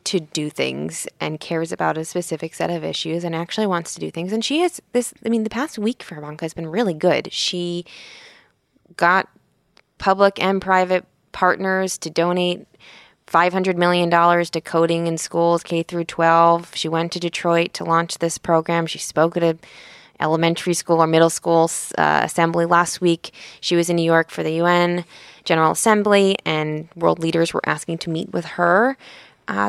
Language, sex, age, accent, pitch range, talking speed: English, female, 20-39, American, 160-185 Hz, 180 wpm